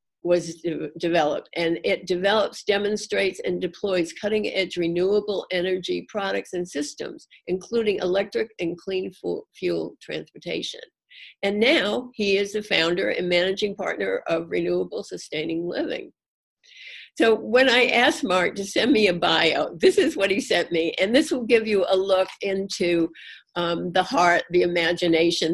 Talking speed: 145 wpm